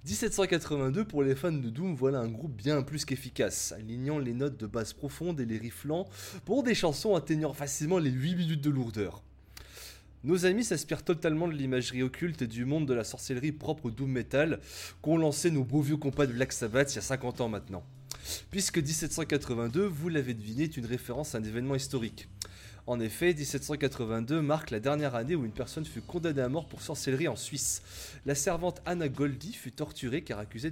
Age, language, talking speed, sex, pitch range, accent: 20-39, French, 195 wpm, male, 120-160 Hz, French